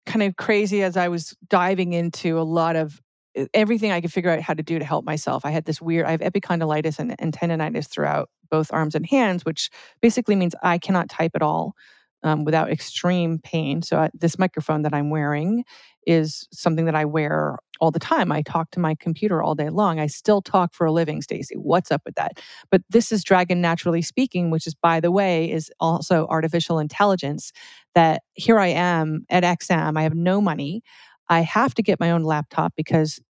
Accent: American